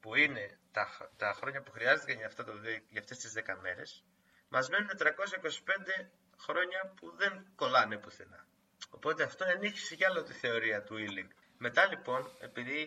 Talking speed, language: 150 wpm, Greek